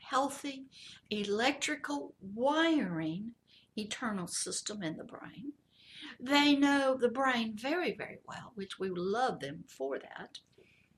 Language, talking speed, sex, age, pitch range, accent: English, 115 wpm, female, 60-79, 205-280 Hz, American